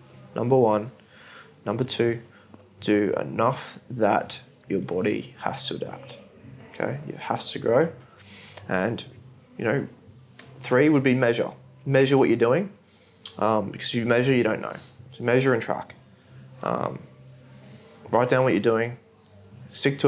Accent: Australian